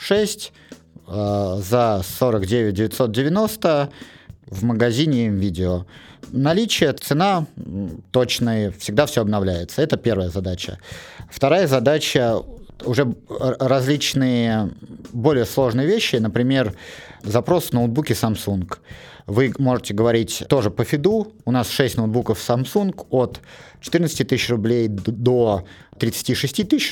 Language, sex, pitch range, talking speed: Russian, male, 110-135 Hz, 105 wpm